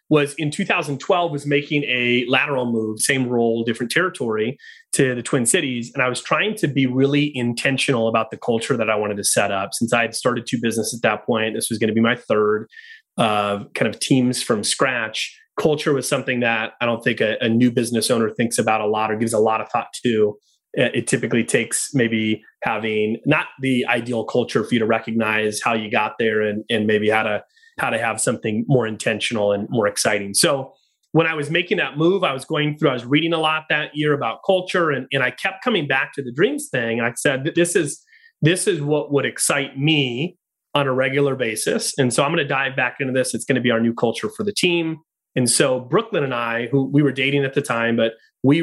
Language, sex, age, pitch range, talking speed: English, male, 30-49, 115-145 Hz, 230 wpm